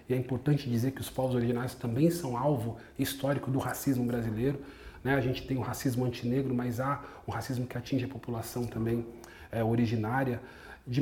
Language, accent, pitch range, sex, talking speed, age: Portuguese, Brazilian, 130-165 Hz, male, 185 wpm, 40-59